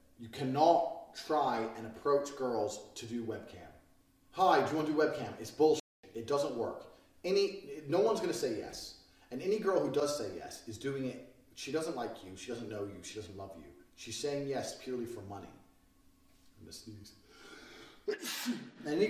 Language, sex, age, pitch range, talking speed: English, male, 30-49, 110-160 Hz, 190 wpm